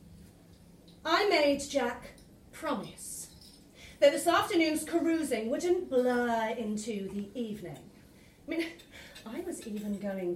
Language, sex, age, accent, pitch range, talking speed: English, female, 30-49, British, 210-285 Hz, 110 wpm